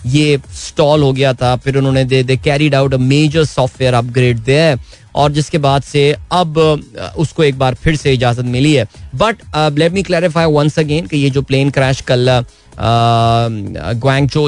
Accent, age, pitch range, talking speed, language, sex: native, 20-39, 120-145 Hz, 160 wpm, Hindi, male